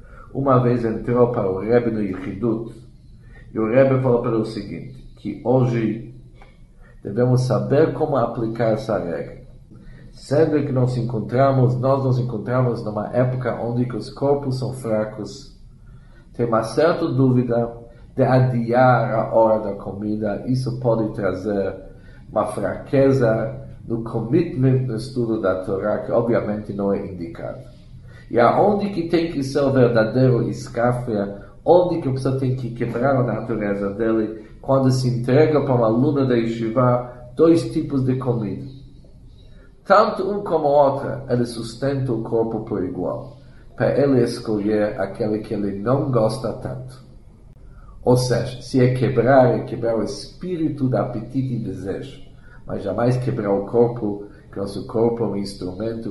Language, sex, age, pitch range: Korean, male, 50-69, 110-130 Hz